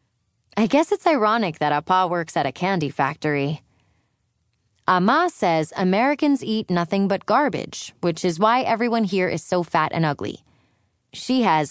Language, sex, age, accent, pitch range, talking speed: English, female, 20-39, American, 140-220 Hz, 160 wpm